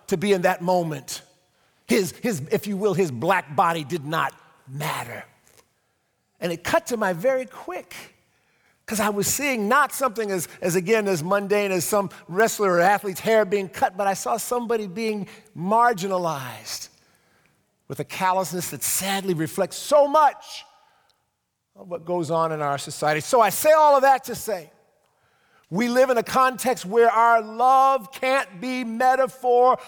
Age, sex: 50-69, male